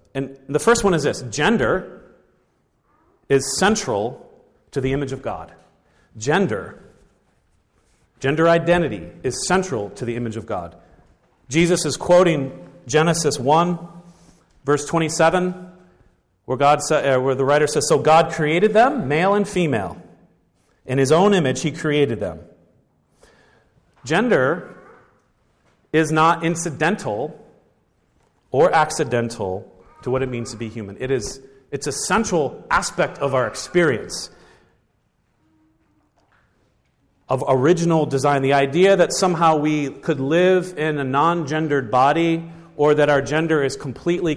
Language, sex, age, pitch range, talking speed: English, male, 40-59, 130-165 Hz, 125 wpm